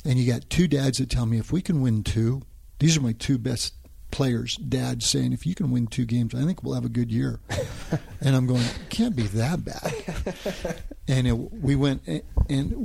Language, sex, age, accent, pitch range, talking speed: English, male, 50-69, American, 110-130 Hz, 210 wpm